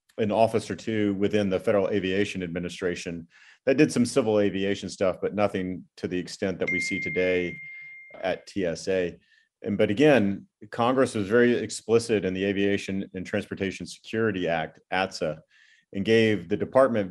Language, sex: English, male